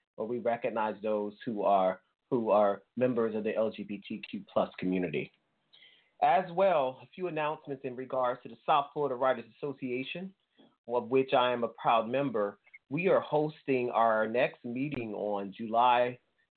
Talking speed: 150 wpm